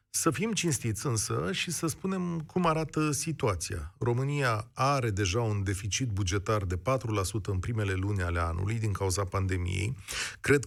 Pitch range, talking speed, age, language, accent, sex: 105-140 Hz, 150 wpm, 40-59, Romanian, native, male